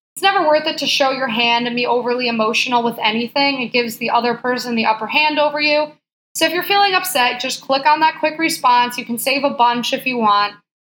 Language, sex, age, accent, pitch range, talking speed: English, female, 20-39, American, 235-290 Hz, 235 wpm